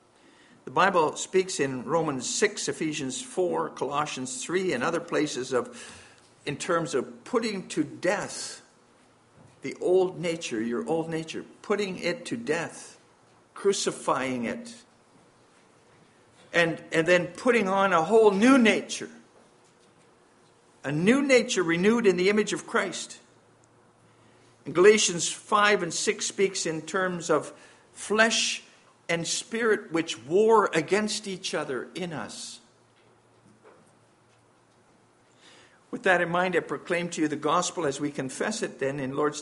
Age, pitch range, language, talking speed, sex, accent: 50-69, 150-205 Hz, English, 130 wpm, male, American